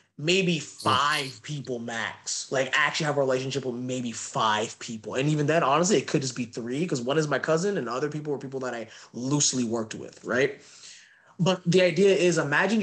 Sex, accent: male, American